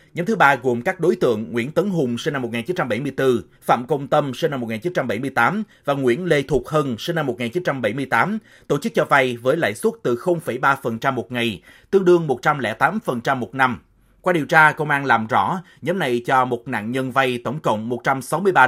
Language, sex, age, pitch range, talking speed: Vietnamese, male, 30-49, 125-165 Hz, 195 wpm